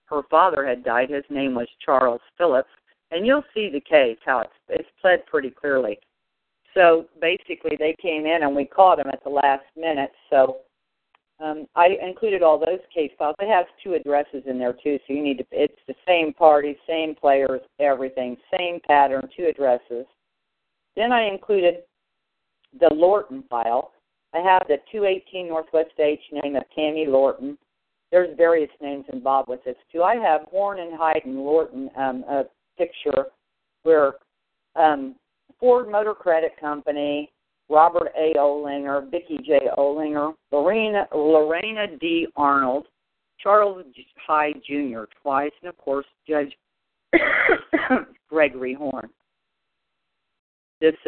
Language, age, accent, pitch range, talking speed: English, 50-69, American, 140-180 Hz, 145 wpm